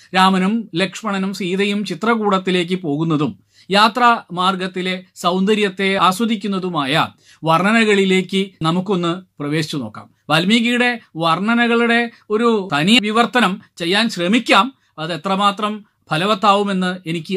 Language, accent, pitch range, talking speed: Malayalam, native, 180-230 Hz, 80 wpm